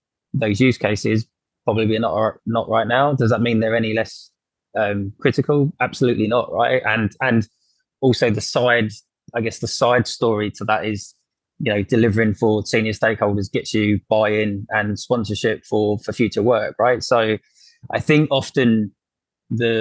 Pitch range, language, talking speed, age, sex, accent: 110-120 Hz, English, 160 wpm, 20-39, male, British